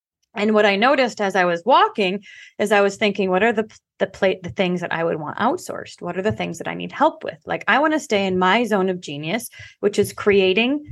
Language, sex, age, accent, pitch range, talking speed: English, female, 20-39, American, 190-235 Hz, 255 wpm